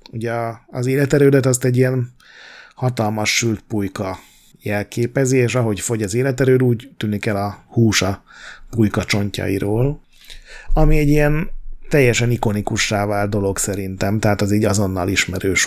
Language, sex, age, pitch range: Hungarian, male, 30-49, 105-125 Hz